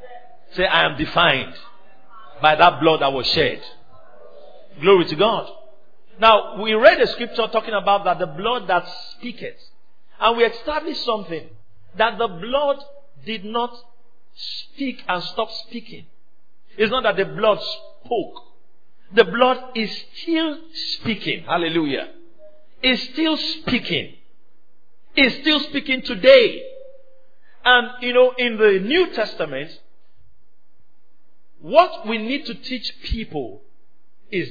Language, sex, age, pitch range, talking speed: English, male, 50-69, 215-300 Hz, 125 wpm